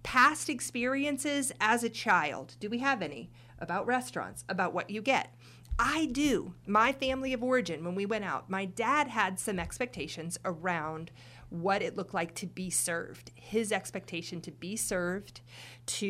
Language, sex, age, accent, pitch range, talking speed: English, female, 30-49, American, 170-220 Hz, 165 wpm